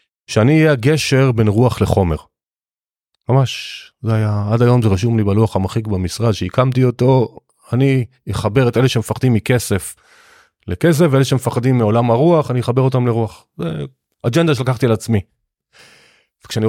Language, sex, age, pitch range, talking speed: Hebrew, male, 30-49, 110-135 Hz, 140 wpm